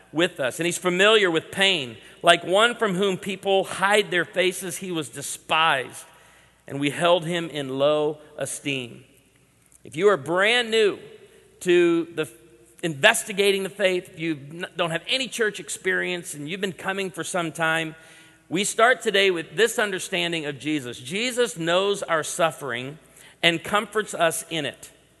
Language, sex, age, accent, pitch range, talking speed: English, male, 40-59, American, 160-195 Hz, 155 wpm